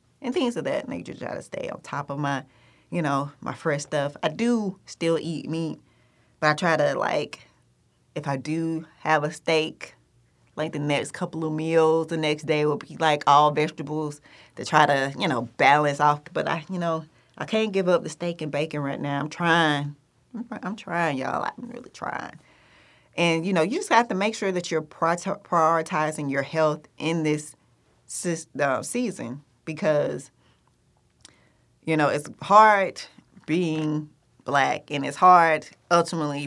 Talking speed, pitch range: 170 wpm, 140-160 Hz